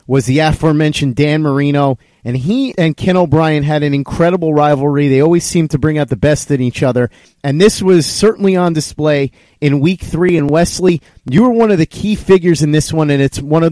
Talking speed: 220 wpm